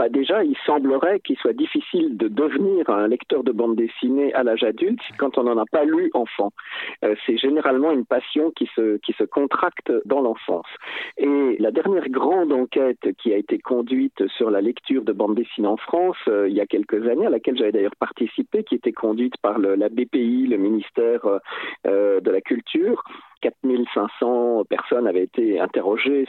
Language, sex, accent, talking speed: French, male, French, 185 wpm